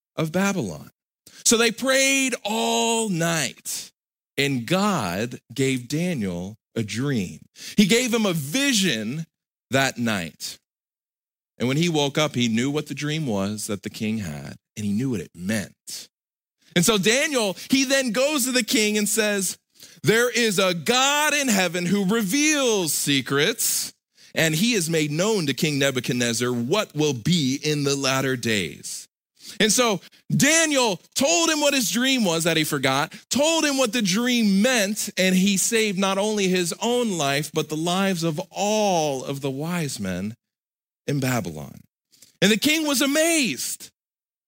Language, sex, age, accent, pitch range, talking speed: English, male, 40-59, American, 140-225 Hz, 160 wpm